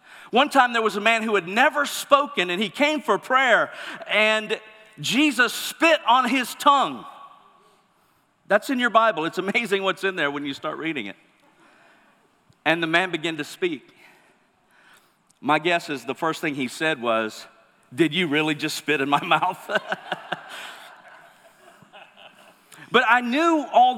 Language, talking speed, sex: English, 155 wpm, male